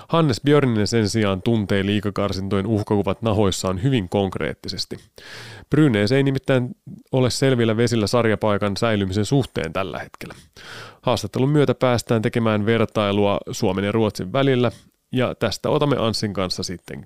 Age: 30-49